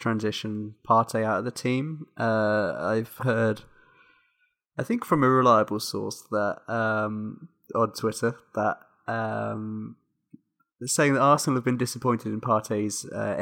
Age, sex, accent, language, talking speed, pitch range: 20-39, male, British, English, 135 wpm, 105-120 Hz